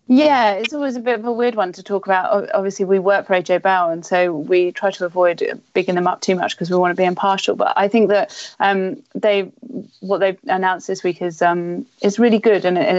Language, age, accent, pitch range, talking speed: English, 30-49, British, 180-205 Hz, 245 wpm